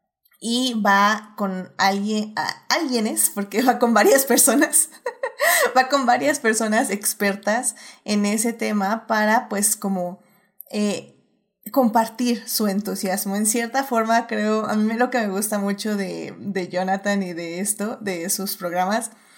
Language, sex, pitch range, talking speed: Spanish, female, 200-250 Hz, 140 wpm